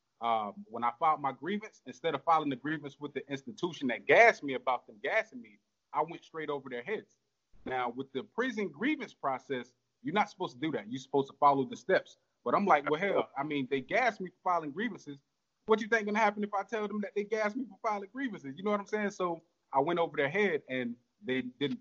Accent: American